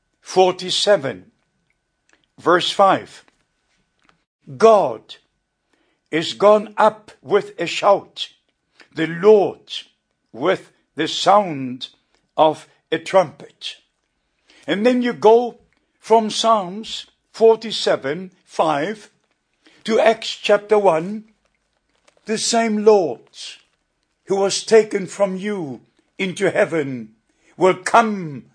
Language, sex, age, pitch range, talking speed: English, male, 60-79, 160-205 Hz, 90 wpm